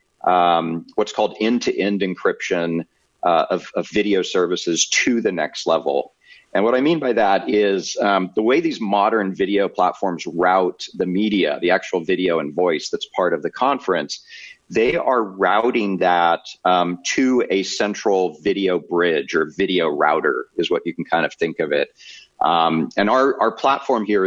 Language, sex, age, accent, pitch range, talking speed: English, male, 40-59, American, 90-125 Hz, 170 wpm